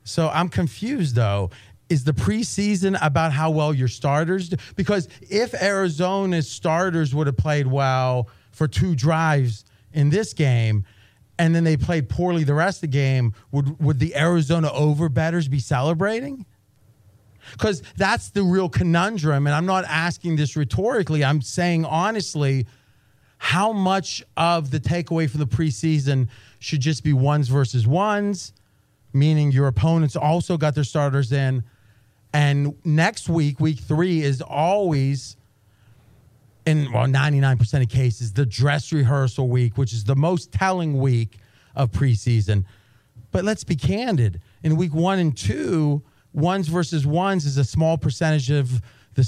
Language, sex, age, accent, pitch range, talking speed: English, male, 30-49, American, 125-165 Hz, 150 wpm